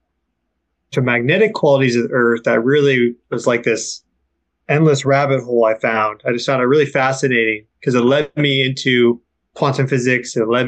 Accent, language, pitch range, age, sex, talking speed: American, English, 115-140 Hz, 20-39, male, 175 wpm